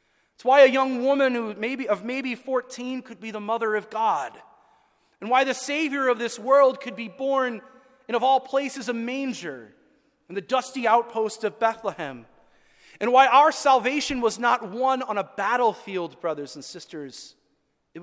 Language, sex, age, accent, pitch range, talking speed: English, male, 30-49, American, 220-265 Hz, 175 wpm